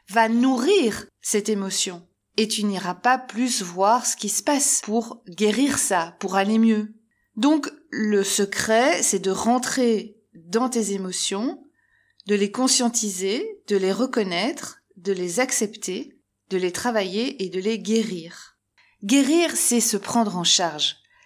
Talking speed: 145 wpm